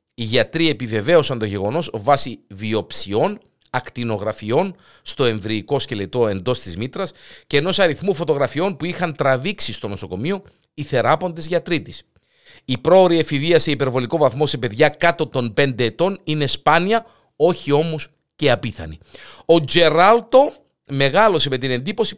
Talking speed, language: 140 wpm, Greek